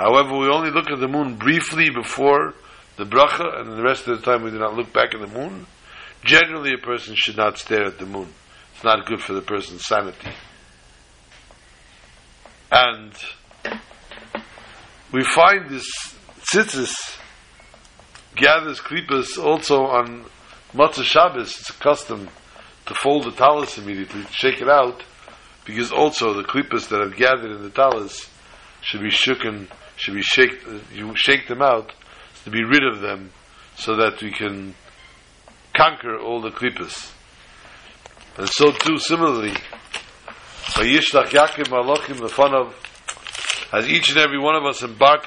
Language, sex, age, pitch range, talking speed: English, male, 60-79, 110-145 Hz, 155 wpm